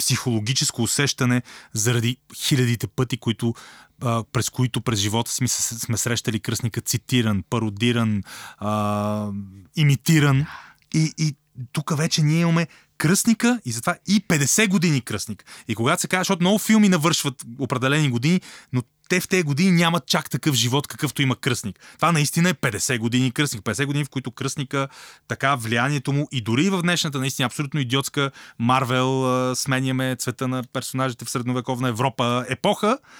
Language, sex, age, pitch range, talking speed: Bulgarian, male, 30-49, 120-150 Hz, 150 wpm